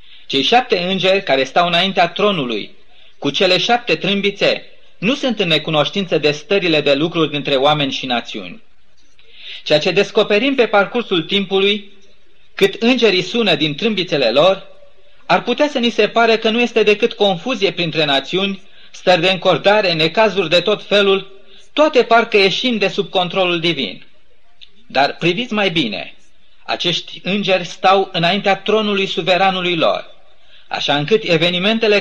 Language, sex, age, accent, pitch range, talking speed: Romanian, male, 30-49, native, 175-215 Hz, 140 wpm